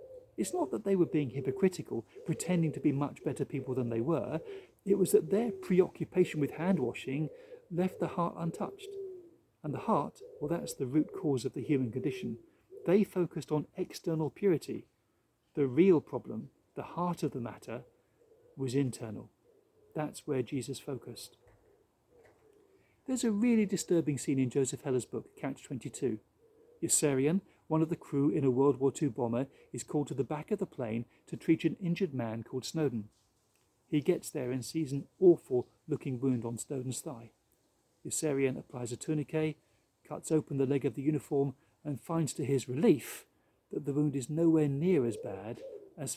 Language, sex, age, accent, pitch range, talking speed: English, male, 40-59, British, 135-185 Hz, 175 wpm